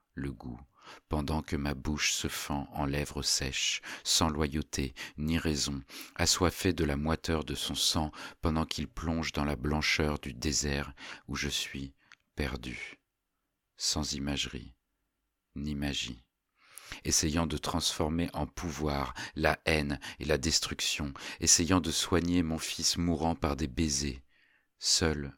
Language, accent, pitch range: French, French, 70-85 Hz